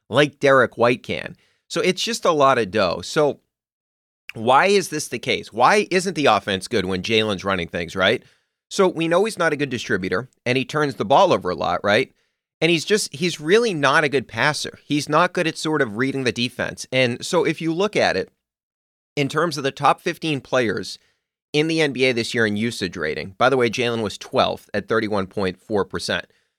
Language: English